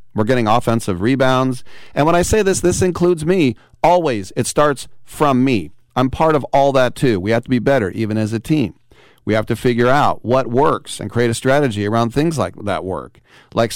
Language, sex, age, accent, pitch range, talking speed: English, male, 40-59, American, 105-130 Hz, 215 wpm